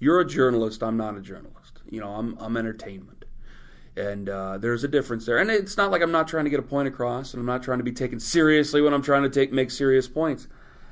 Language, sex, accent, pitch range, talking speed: English, male, American, 120-155 Hz, 255 wpm